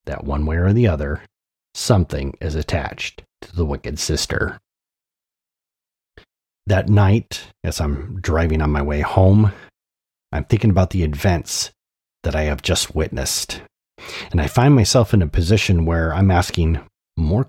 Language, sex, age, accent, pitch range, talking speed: English, male, 30-49, American, 80-100 Hz, 150 wpm